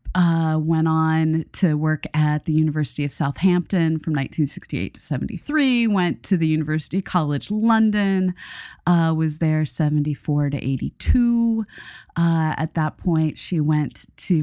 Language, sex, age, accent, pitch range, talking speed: English, female, 30-49, American, 155-195 Hz, 135 wpm